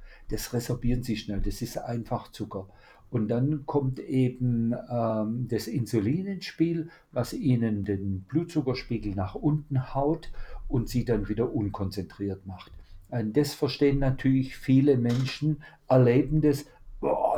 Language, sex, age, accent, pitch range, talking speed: German, male, 50-69, German, 115-140 Hz, 130 wpm